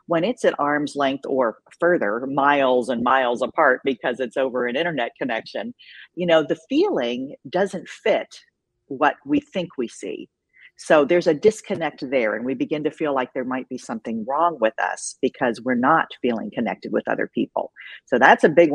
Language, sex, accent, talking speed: English, female, American, 185 wpm